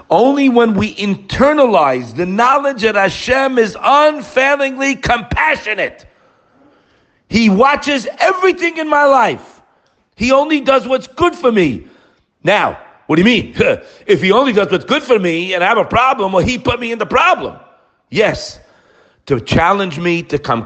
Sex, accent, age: male, American, 50-69